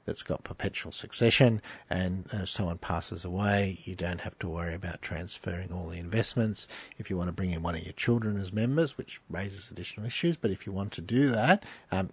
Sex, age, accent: male, 50-69, Australian